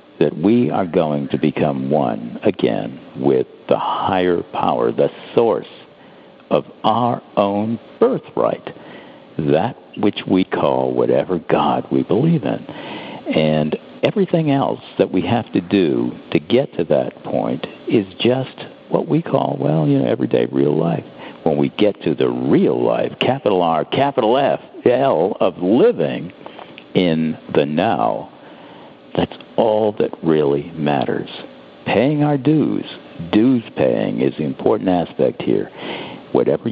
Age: 60-79